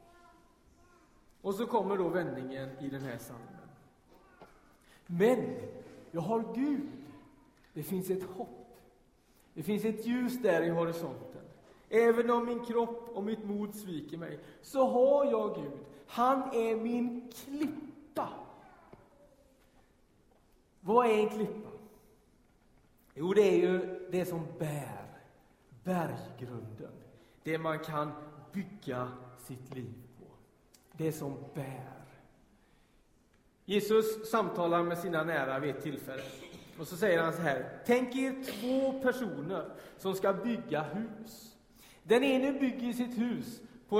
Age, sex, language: 40-59, male, Swedish